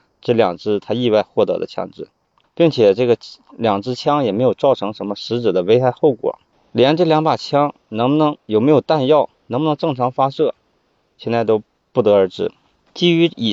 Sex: male